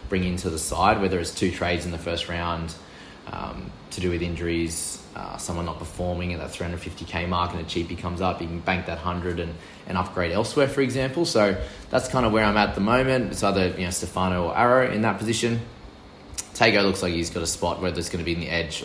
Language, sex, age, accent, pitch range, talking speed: English, male, 20-39, Australian, 85-100 Hz, 240 wpm